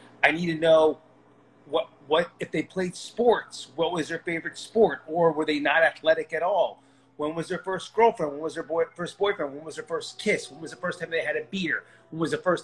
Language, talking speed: English, 240 wpm